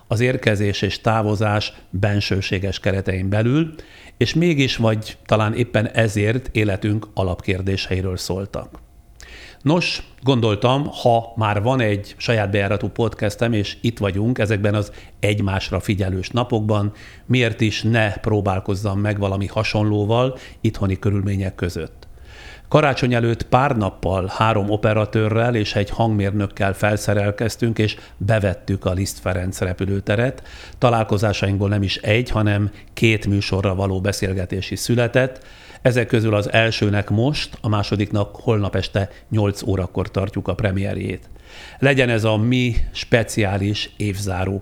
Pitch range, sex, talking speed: 95-115 Hz, male, 120 wpm